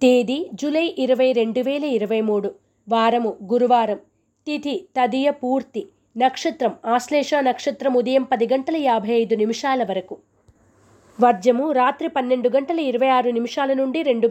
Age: 20-39